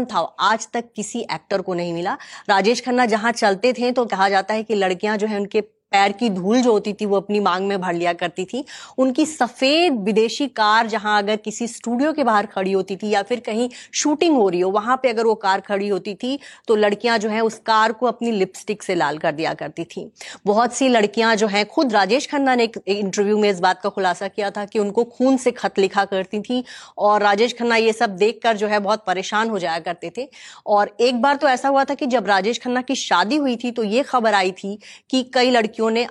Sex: female